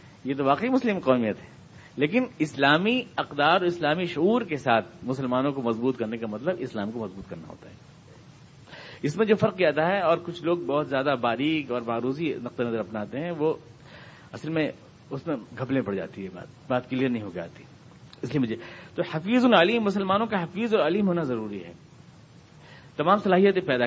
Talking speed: 195 wpm